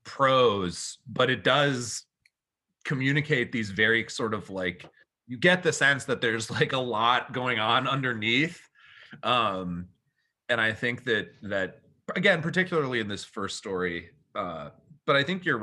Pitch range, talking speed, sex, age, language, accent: 100-140 Hz, 150 wpm, male, 30-49, English, American